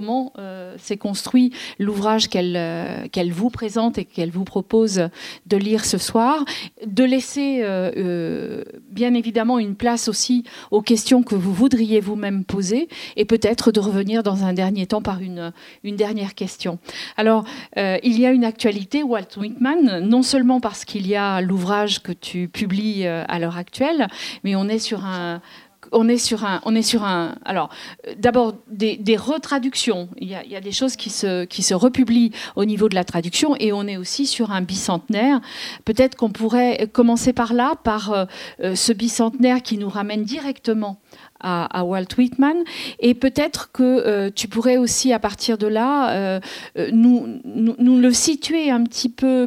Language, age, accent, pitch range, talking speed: French, 40-59, French, 200-250 Hz, 180 wpm